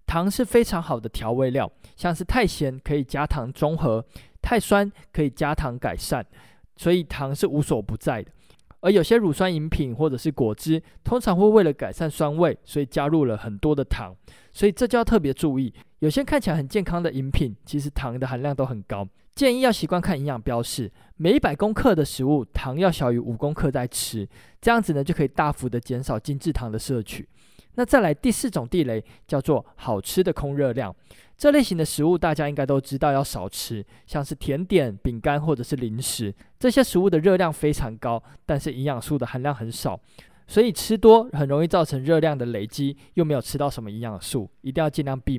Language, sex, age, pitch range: Chinese, male, 20-39, 130-175 Hz